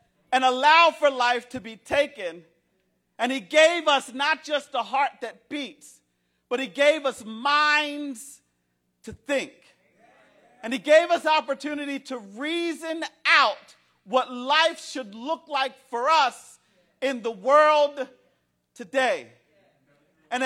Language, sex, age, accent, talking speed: English, male, 50-69, American, 130 wpm